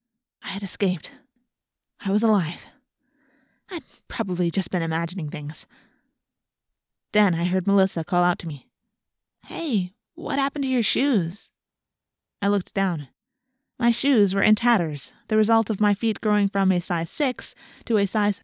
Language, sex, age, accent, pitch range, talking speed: English, female, 20-39, American, 180-230 Hz, 155 wpm